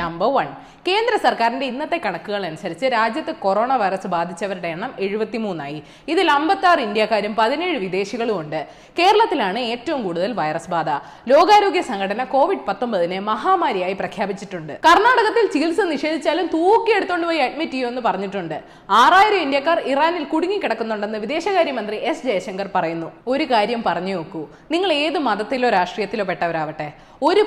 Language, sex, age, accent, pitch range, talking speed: Malayalam, female, 20-39, native, 190-315 Hz, 120 wpm